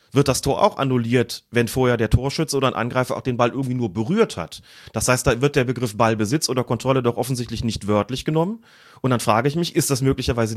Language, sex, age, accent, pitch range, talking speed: German, male, 30-49, German, 115-150 Hz, 235 wpm